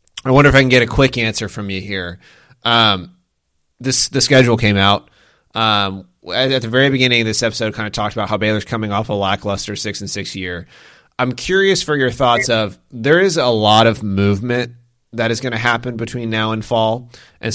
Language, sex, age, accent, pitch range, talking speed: English, male, 30-49, American, 95-120 Hz, 210 wpm